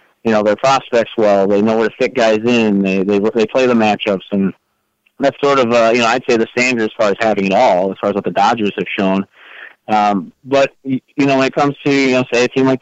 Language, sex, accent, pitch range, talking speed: English, male, American, 110-130 Hz, 265 wpm